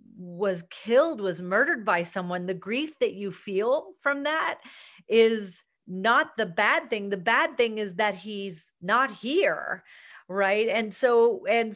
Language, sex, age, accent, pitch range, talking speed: English, female, 40-59, American, 170-215 Hz, 155 wpm